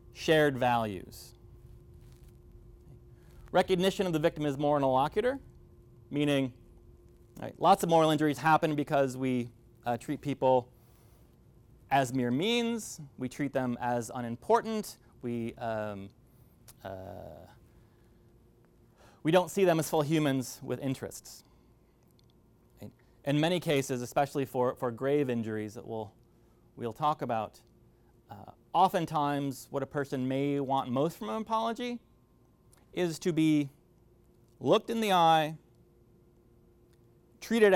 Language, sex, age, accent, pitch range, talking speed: English, male, 30-49, American, 125-180 Hz, 115 wpm